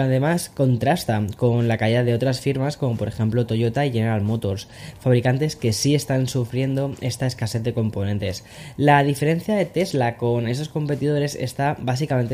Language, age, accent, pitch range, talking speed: Spanish, 10-29, Spanish, 115-140 Hz, 160 wpm